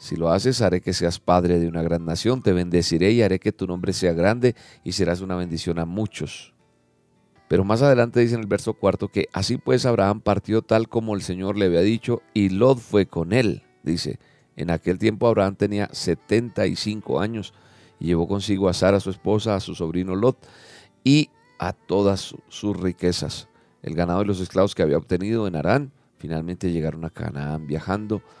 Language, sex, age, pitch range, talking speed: Spanish, male, 40-59, 85-110 Hz, 190 wpm